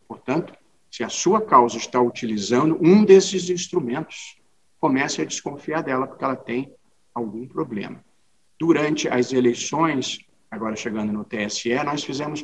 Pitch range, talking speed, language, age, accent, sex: 125-160 Hz, 135 wpm, Portuguese, 50-69, Brazilian, male